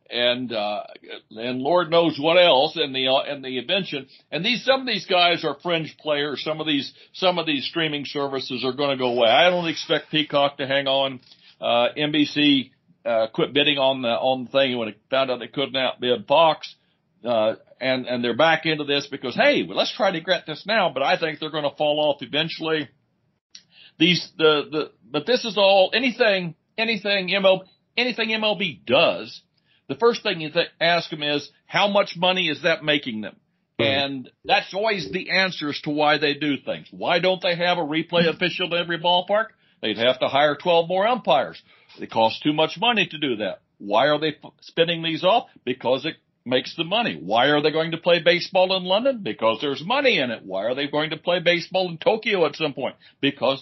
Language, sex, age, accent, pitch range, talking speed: English, male, 60-79, American, 140-185 Hz, 210 wpm